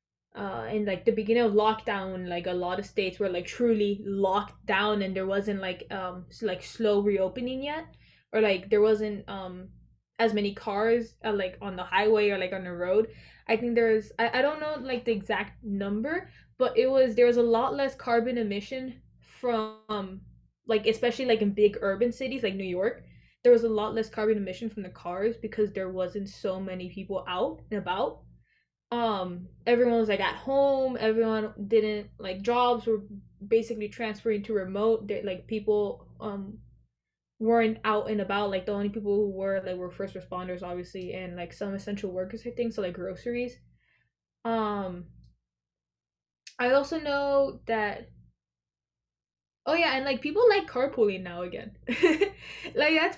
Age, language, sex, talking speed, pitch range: 10-29, English, female, 175 wpm, 190-235 Hz